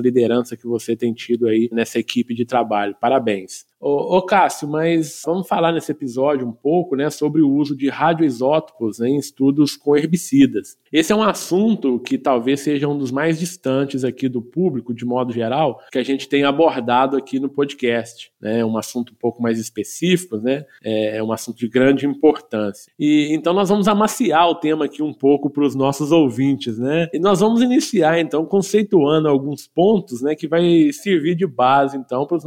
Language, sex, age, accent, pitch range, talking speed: Portuguese, male, 20-39, Brazilian, 125-160 Hz, 190 wpm